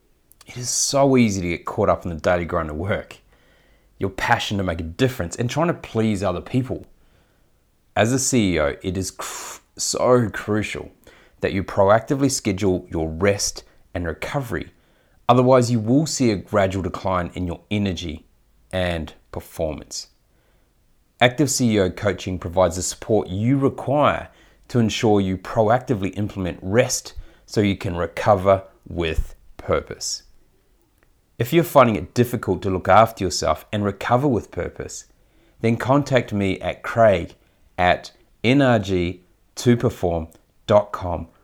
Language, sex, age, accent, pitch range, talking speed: English, male, 30-49, Australian, 90-115 Hz, 135 wpm